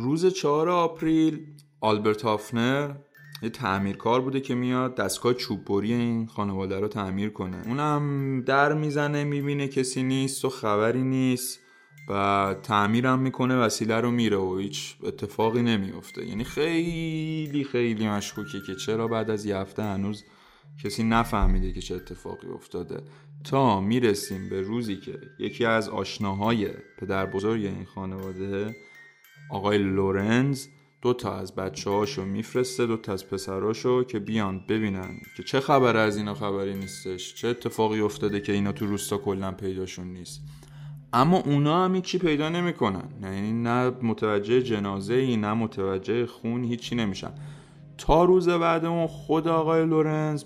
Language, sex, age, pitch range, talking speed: Persian, male, 20-39, 100-140 Hz, 140 wpm